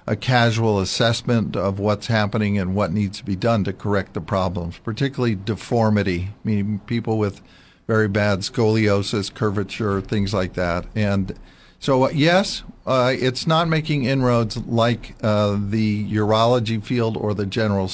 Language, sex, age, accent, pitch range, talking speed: English, male, 50-69, American, 100-120 Hz, 145 wpm